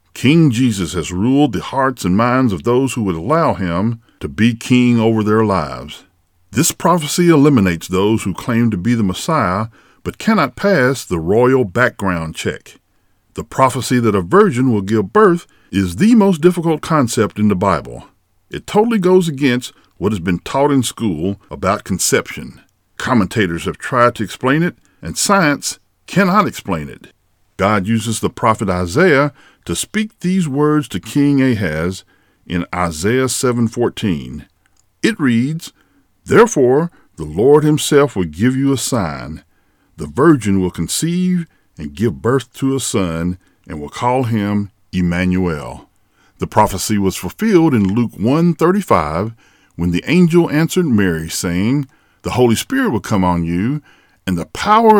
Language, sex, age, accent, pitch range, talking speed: English, male, 50-69, American, 95-140 Hz, 155 wpm